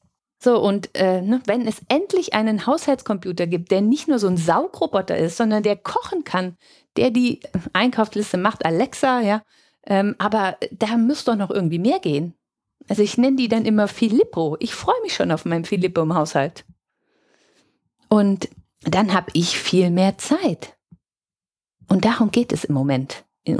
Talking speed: 170 wpm